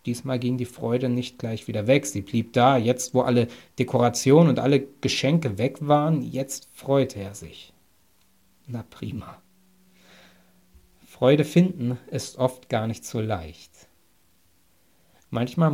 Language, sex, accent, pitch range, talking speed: German, male, German, 95-145 Hz, 135 wpm